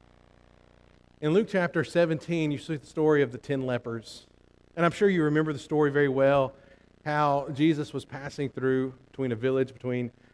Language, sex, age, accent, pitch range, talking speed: English, male, 40-59, American, 110-175 Hz, 175 wpm